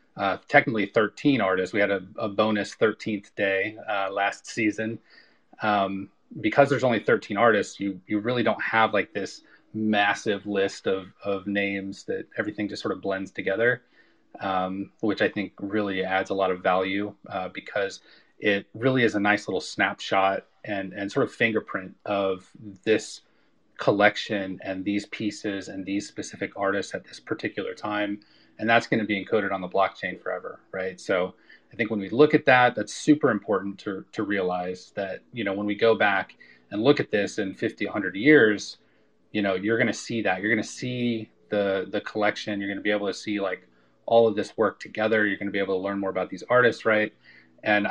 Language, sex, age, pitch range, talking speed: English, male, 30-49, 95-110 Hz, 190 wpm